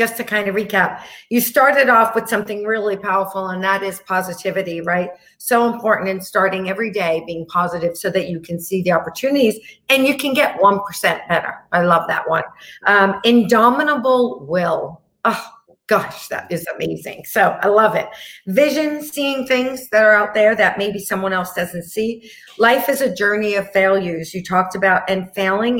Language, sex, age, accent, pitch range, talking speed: English, female, 50-69, American, 175-220 Hz, 180 wpm